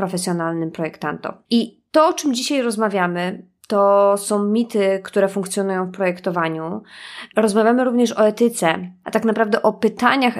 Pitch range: 190-230 Hz